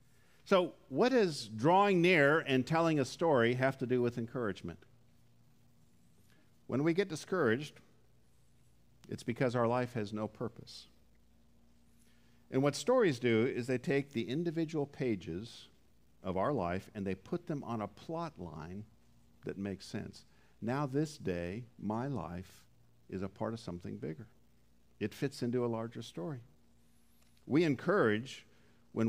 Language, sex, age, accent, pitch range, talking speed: English, male, 50-69, American, 85-130 Hz, 140 wpm